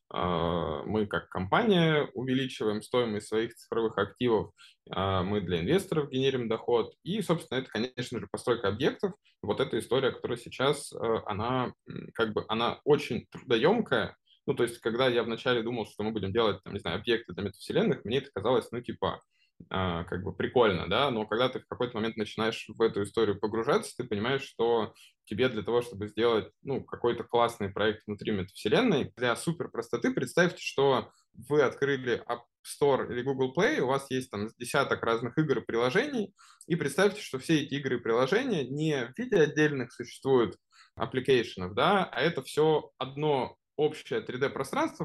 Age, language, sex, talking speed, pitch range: 20-39, Russian, male, 165 wpm, 110-145 Hz